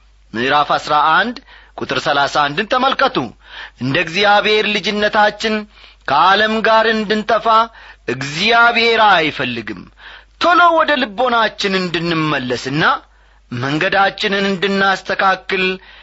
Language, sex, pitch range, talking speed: Amharic, male, 145-230 Hz, 70 wpm